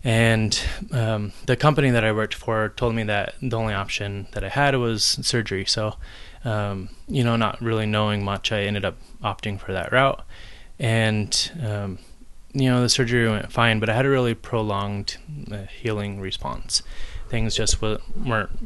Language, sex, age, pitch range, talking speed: English, male, 20-39, 100-120 Hz, 170 wpm